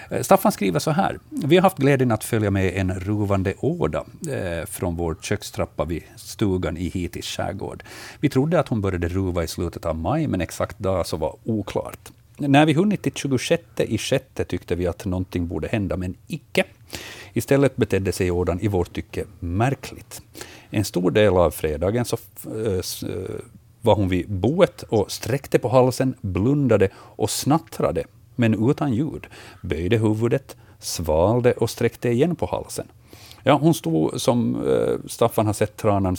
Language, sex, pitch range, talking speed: Swedish, male, 95-125 Hz, 160 wpm